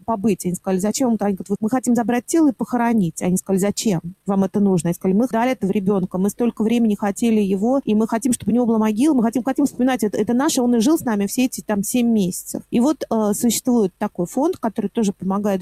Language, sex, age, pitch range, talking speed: Russian, female, 30-49, 200-245 Hz, 245 wpm